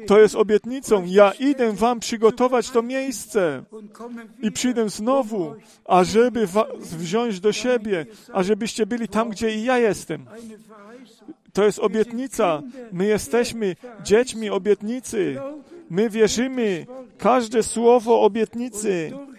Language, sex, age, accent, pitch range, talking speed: Polish, male, 40-59, native, 210-235 Hz, 110 wpm